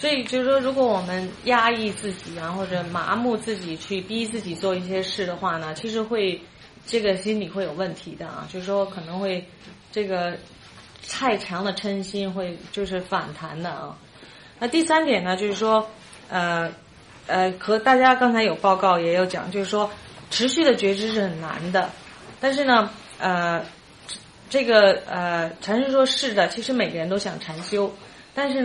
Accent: Chinese